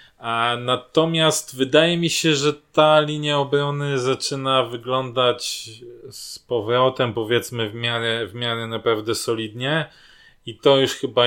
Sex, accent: male, native